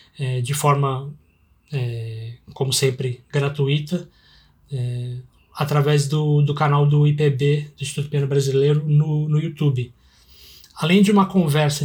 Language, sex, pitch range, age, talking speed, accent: Portuguese, male, 135-160 Hz, 20-39, 110 wpm, Brazilian